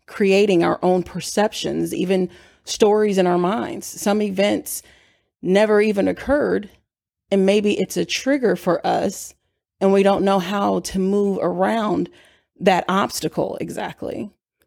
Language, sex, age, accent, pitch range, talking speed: English, female, 30-49, American, 175-210 Hz, 130 wpm